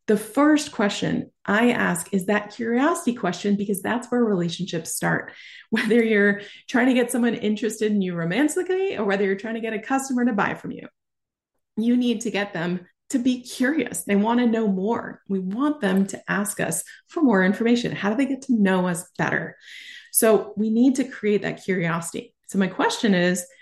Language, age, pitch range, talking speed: English, 30-49, 190-245 Hz, 195 wpm